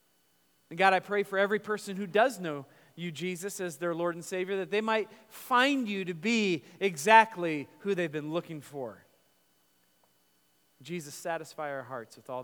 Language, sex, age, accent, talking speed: English, male, 40-59, American, 175 wpm